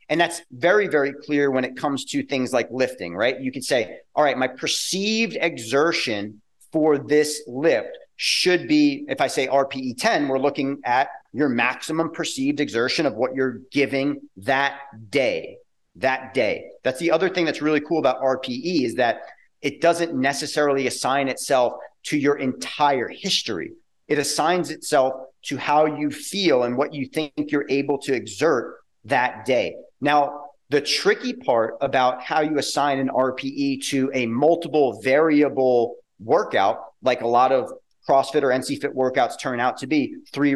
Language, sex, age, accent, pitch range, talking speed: English, male, 30-49, American, 130-160 Hz, 165 wpm